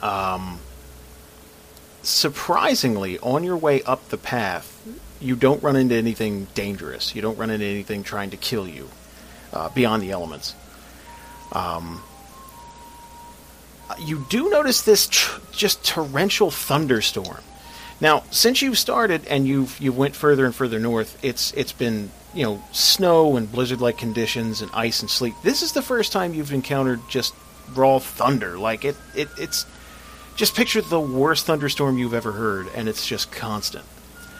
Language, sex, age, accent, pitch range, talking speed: English, male, 40-59, American, 105-150 Hz, 155 wpm